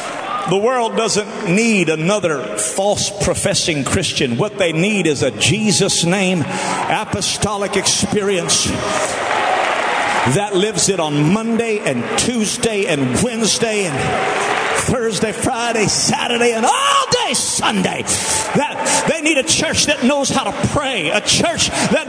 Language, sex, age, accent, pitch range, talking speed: English, male, 40-59, American, 205-295 Hz, 130 wpm